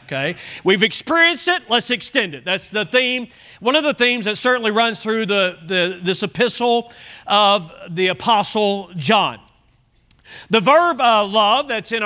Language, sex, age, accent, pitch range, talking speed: English, male, 40-59, American, 195-260 Hz, 160 wpm